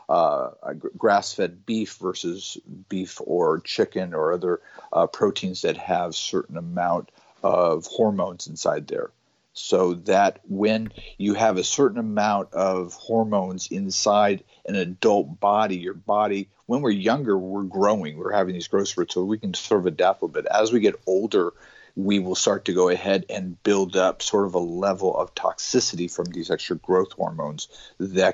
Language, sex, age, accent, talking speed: English, male, 50-69, American, 165 wpm